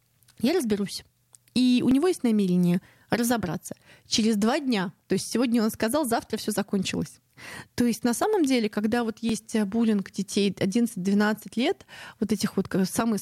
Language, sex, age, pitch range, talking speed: Russian, female, 20-39, 195-245 Hz, 160 wpm